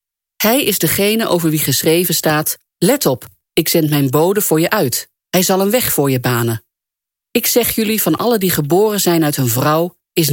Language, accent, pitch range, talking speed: English, Dutch, 145-205 Hz, 205 wpm